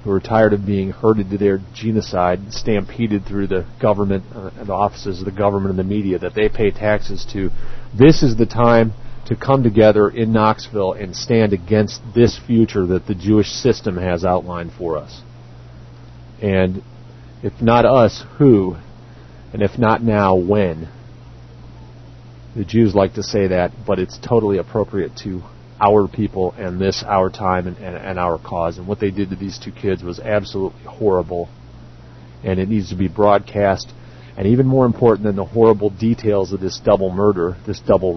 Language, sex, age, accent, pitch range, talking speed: English, male, 40-59, American, 95-120 Hz, 175 wpm